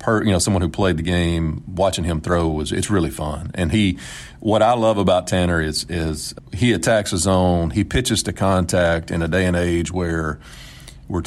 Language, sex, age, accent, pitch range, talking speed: English, male, 40-59, American, 85-100 Hz, 200 wpm